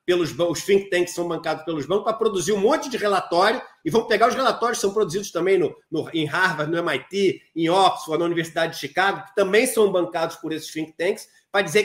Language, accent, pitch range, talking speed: Portuguese, Brazilian, 185-245 Hz, 215 wpm